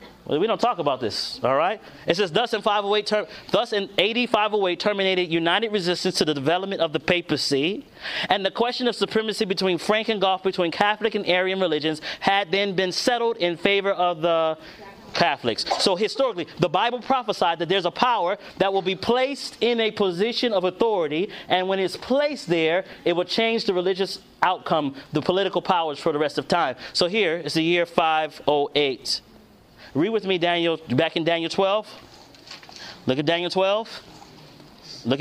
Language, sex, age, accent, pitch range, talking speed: English, male, 30-49, American, 175-220 Hz, 175 wpm